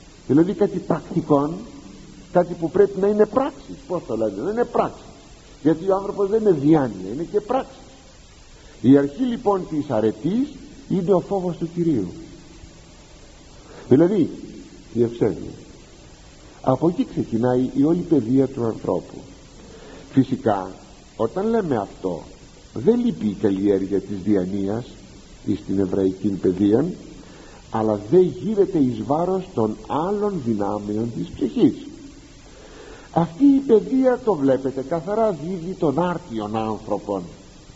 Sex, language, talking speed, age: male, Greek, 125 wpm, 50-69